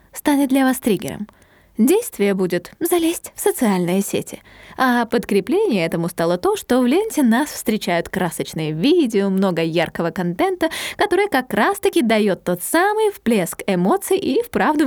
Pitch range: 190-285 Hz